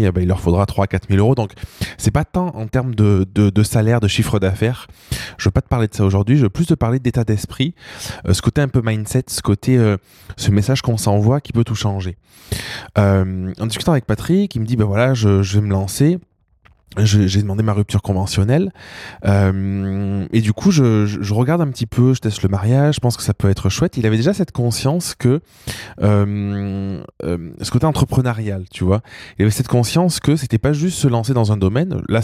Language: French